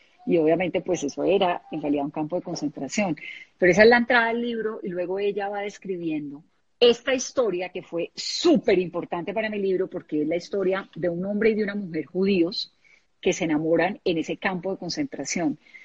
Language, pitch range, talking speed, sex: Spanish, 170-210 Hz, 195 wpm, female